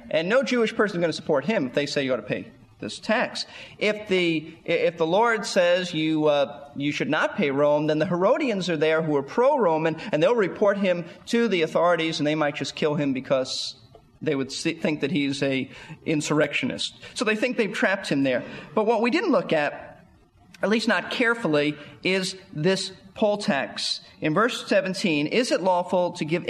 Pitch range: 150-215 Hz